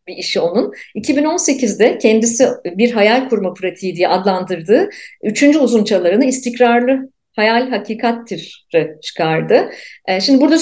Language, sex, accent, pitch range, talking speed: Turkish, female, native, 190-270 Hz, 105 wpm